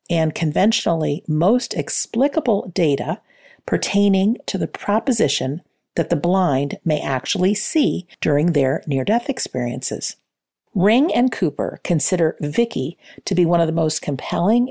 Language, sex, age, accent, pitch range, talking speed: English, female, 50-69, American, 155-210 Hz, 125 wpm